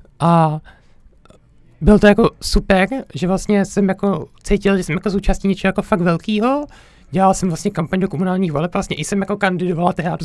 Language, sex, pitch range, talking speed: Czech, male, 170-205 Hz, 180 wpm